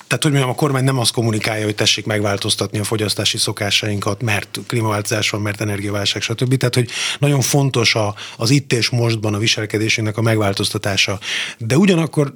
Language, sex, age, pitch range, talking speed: Hungarian, male, 30-49, 110-140 Hz, 170 wpm